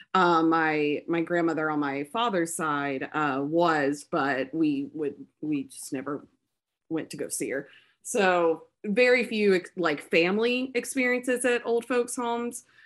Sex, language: female, English